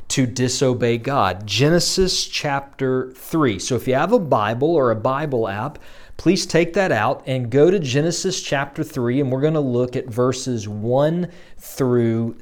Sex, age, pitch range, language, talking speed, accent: male, 40-59, 120-160 Hz, English, 170 wpm, American